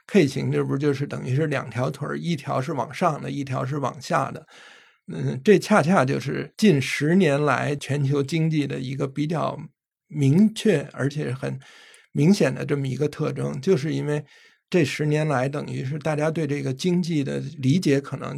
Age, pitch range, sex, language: 50-69, 135-165 Hz, male, Chinese